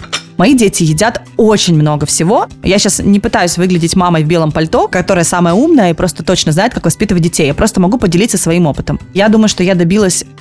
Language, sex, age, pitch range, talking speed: Russian, female, 20-39, 175-220 Hz, 210 wpm